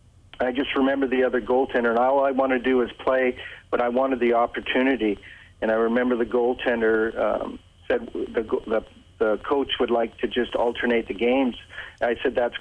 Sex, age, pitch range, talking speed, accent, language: male, 40-59, 115-130 Hz, 200 wpm, American, English